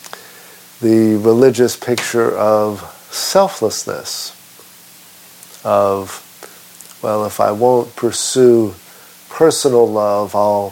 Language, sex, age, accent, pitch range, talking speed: English, male, 50-69, American, 90-115 Hz, 80 wpm